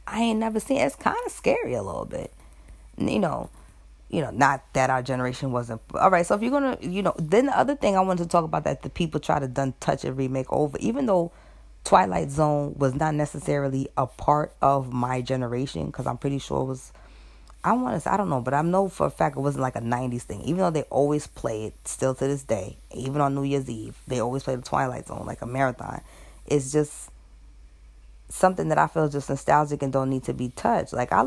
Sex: female